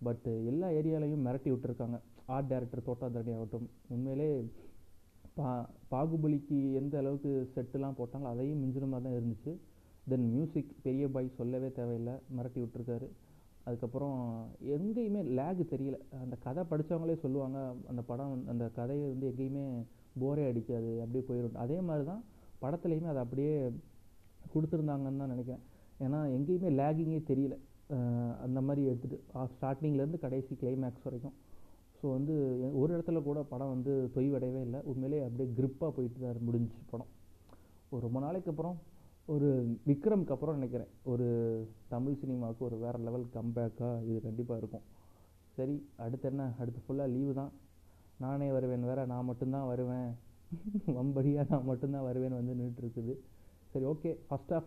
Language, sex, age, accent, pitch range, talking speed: Tamil, male, 30-49, native, 120-140 Hz, 135 wpm